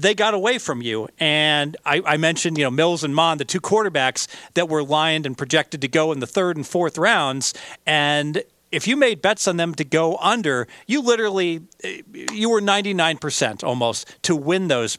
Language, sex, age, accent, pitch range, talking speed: English, male, 40-59, American, 145-190 Hz, 195 wpm